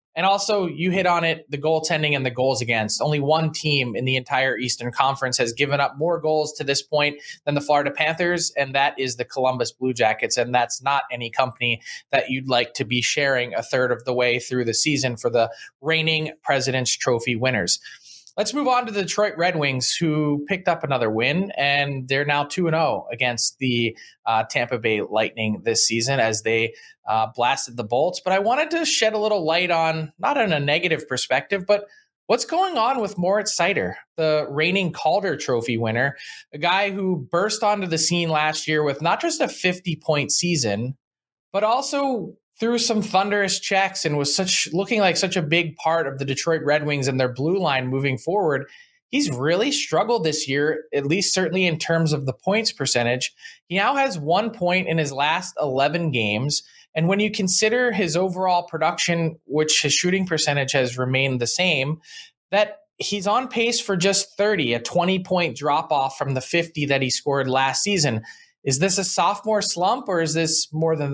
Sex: male